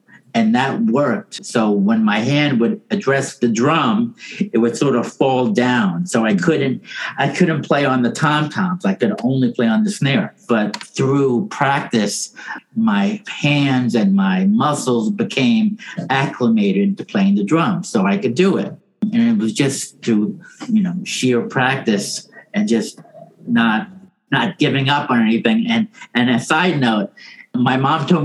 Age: 50-69